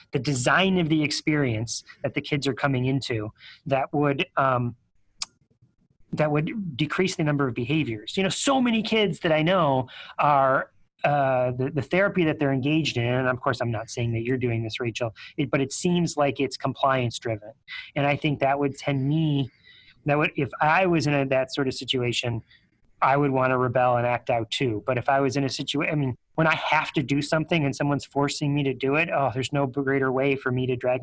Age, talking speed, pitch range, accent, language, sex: 30-49, 220 wpm, 125-155 Hz, American, English, male